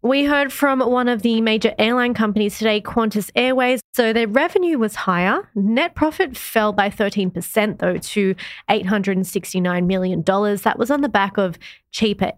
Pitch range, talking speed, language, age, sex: 190-230 Hz, 160 wpm, English, 20-39, female